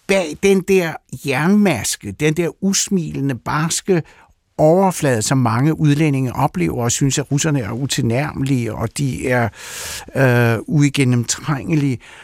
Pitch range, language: 120-150 Hz, Danish